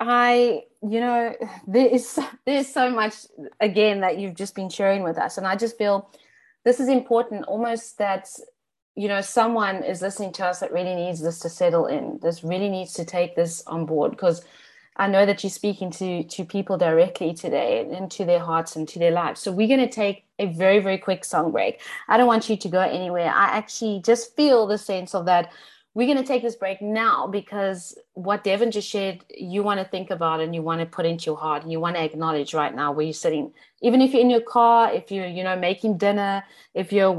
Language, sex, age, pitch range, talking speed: English, female, 20-39, 175-230 Hz, 225 wpm